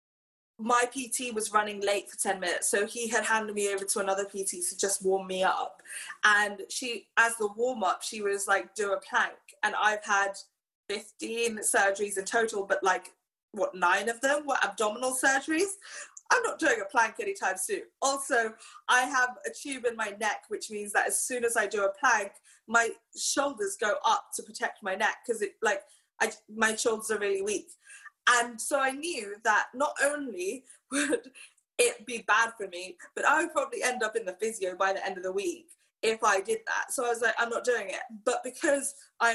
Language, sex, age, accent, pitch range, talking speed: English, female, 20-39, British, 200-275 Hz, 205 wpm